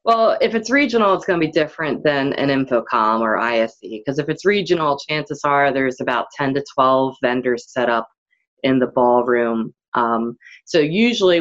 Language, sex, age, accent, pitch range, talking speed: English, female, 20-39, American, 125-160 Hz, 180 wpm